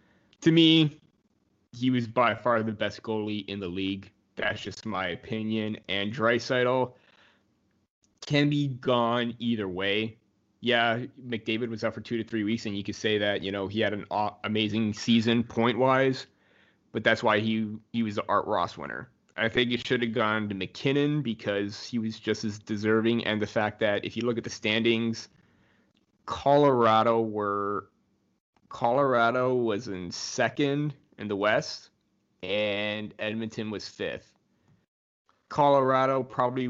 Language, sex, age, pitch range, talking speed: English, male, 20-39, 105-120 Hz, 155 wpm